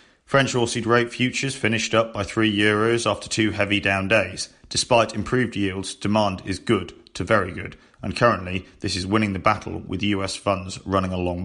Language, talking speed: English, 185 wpm